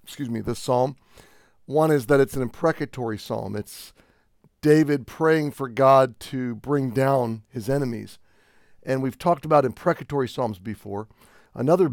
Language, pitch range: English, 115-140 Hz